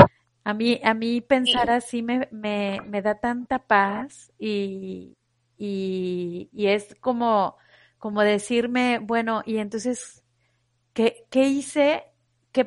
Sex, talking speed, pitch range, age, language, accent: female, 125 wpm, 195-245 Hz, 30-49, Spanish, Mexican